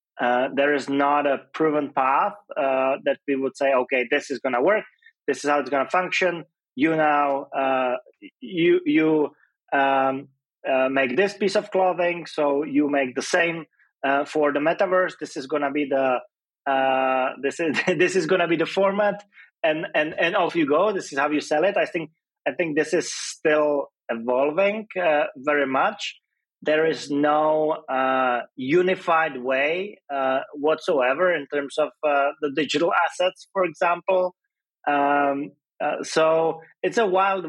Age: 30-49